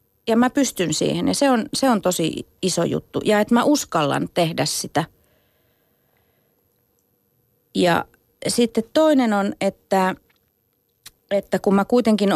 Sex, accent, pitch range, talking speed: female, native, 140-200 Hz, 130 wpm